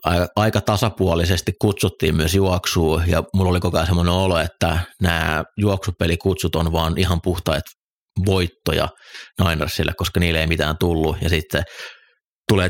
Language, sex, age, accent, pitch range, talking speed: Finnish, male, 30-49, native, 80-95 Hz, 135 wpm